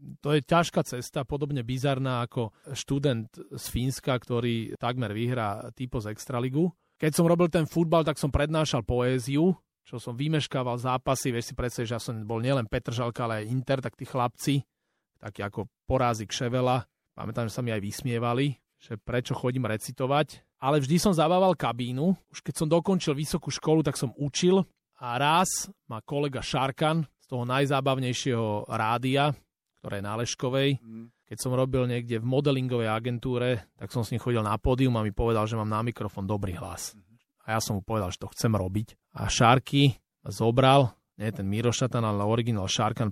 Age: 30-49